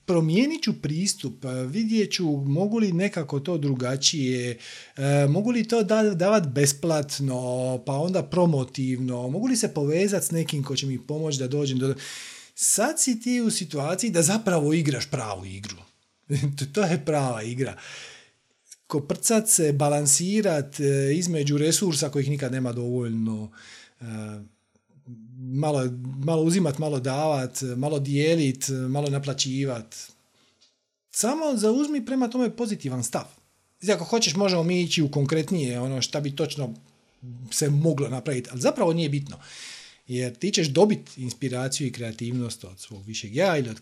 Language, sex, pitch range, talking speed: Croatian, male, 125-185 Hz, 135 wpm